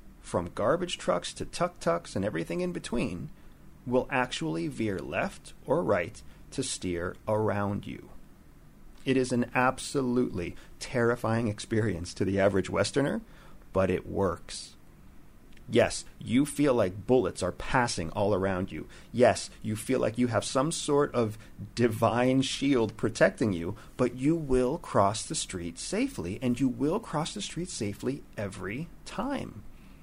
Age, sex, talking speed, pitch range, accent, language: 40-59, male, 140 wpm, 100-130 Hz, American, English